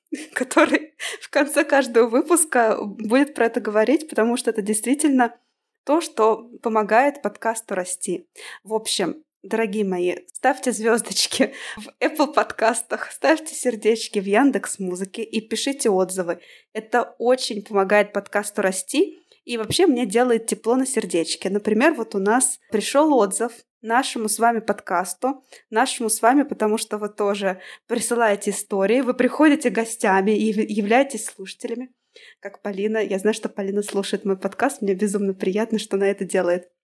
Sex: female